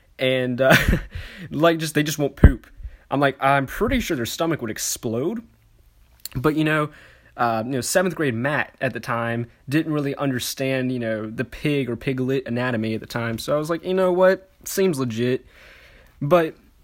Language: English